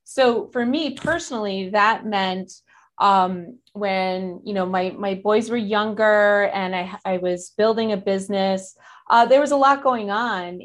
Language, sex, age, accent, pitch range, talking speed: English, female, 30-49, American, 180-220 Hz, 165 wpm